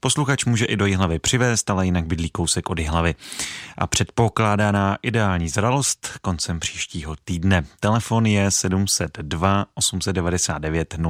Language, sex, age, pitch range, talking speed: Czech, male, 30-49, 90-110 Hz, 130 wpm